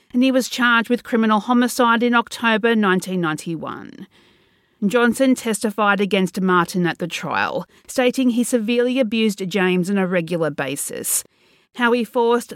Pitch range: 190-240 Hz